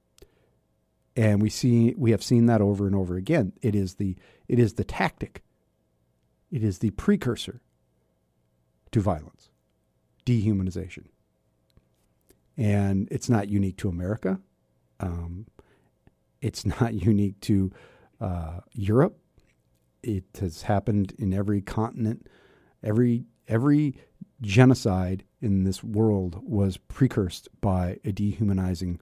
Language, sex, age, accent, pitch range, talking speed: English, male, 50-69, American, 90-115 Hz, 115 wpm